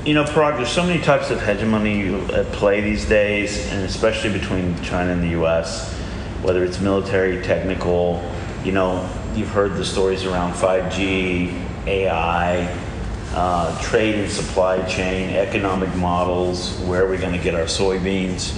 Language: English